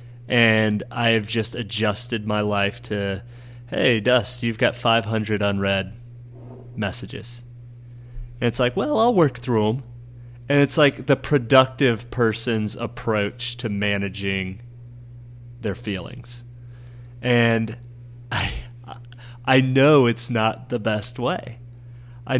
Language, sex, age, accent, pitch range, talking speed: English, male, 30-49, American, 110-125 Hz, 120 wpm